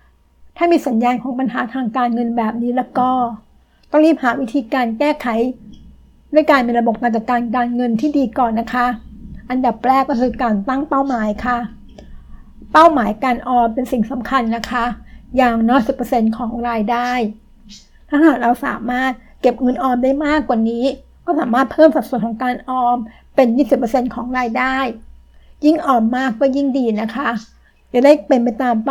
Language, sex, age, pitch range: Thai, female, 60-79, 230-270 Hz